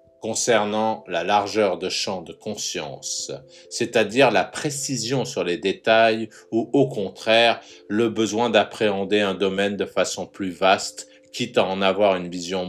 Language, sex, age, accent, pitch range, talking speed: French, male, 50-69, French, 95-125 Hz, 145 wpm